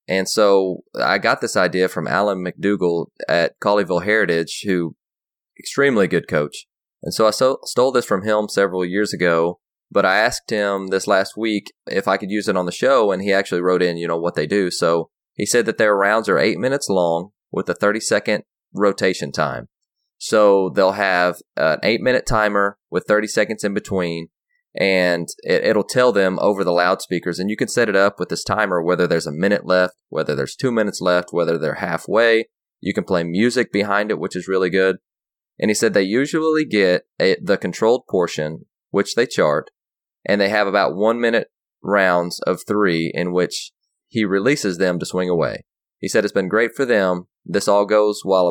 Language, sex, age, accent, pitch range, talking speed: English, male, 20-39, American, 90-105 Hz, 190 wpm